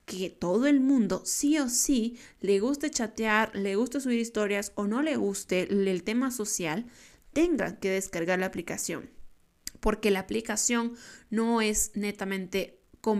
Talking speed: 150 wpm